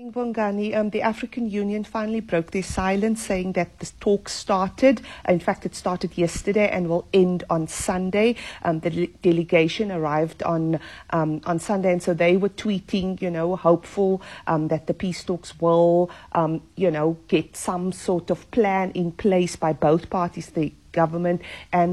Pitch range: 170-195 Hz